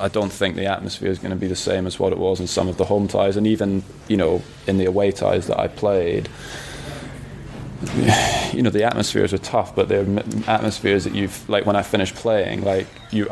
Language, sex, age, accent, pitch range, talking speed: English, male, 20-39, British, 95-105 Hz, 225 wpm